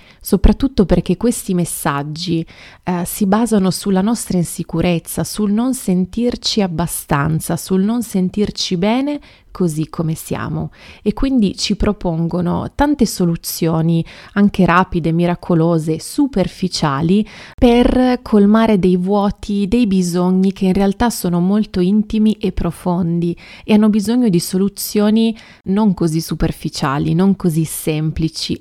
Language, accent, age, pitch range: Italian, native, 30-49, 170-210 Hz